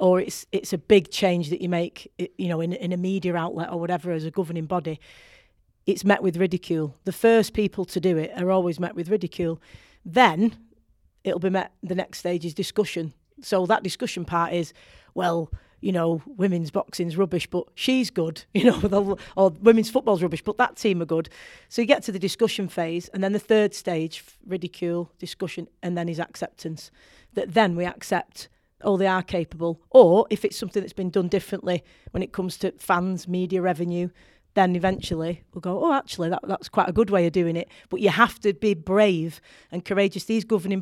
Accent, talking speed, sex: British, 200 wpm, female